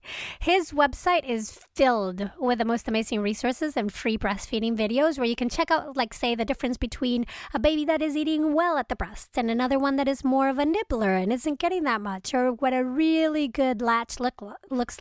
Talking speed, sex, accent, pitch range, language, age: 210 wpm, female, American, 230-290 Hz, English, 30-49